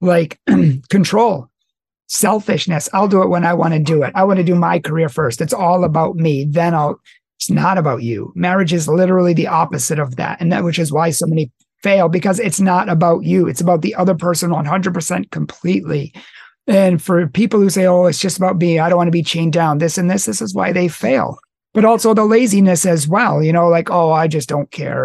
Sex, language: male, English